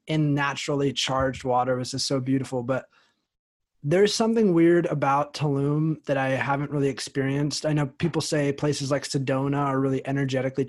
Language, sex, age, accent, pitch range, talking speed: English, male, 20-39, American, 135-155 Hz, 165 wpm